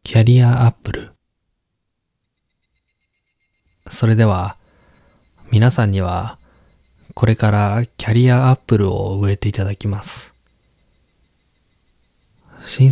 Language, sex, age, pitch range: Japanese, male, 20-39, 100-120 Hz